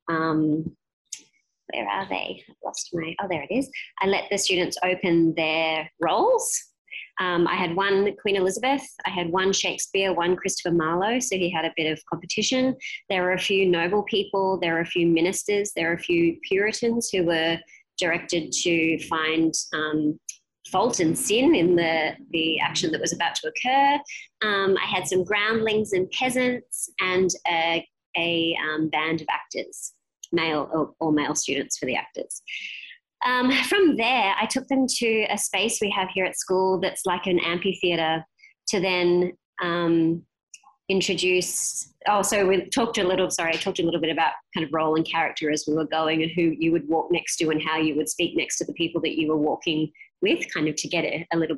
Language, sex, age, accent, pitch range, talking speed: English, female, 20-39, Australian, 160-215 Hz, 195 wpm